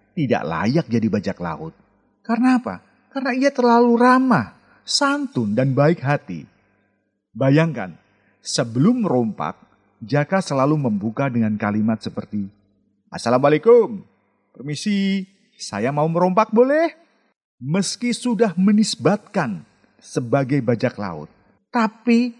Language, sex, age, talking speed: Indonesian, male, 40-59, 100 wpm